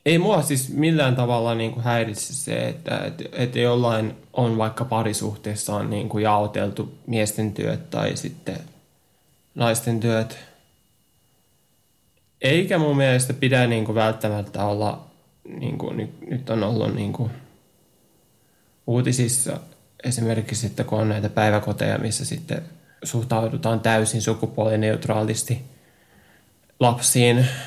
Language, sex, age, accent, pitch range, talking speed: Finnish, male, 10-29, native, 115-135 Hz, 105 wpm